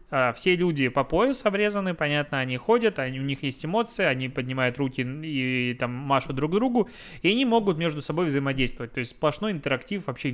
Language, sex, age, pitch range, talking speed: Russian, male, 20-39, 130-160 Hz, 195 wpm